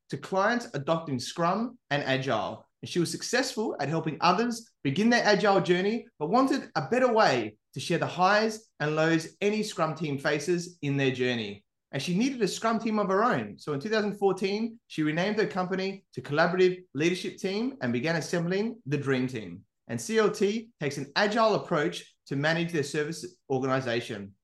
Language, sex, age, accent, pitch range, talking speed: English, male, 20-39, Australian, 145-200 Hz, 175 wpm